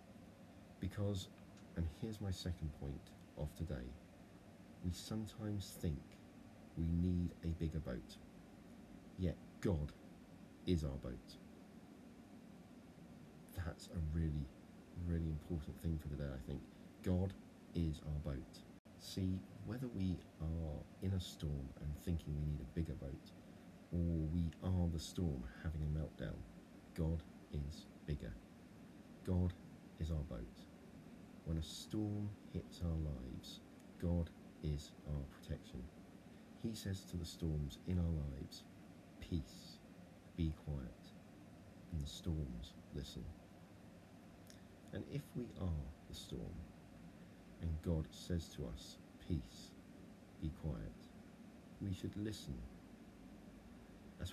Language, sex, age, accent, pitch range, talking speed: English, male, 40-59, British, 75-95 Hz, 120 wpm